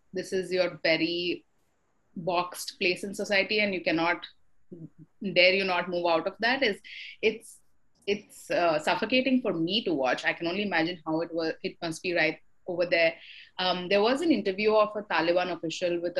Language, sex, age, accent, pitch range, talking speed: English, female, 30-49, Indian, 165-195 Hz, 185 wpm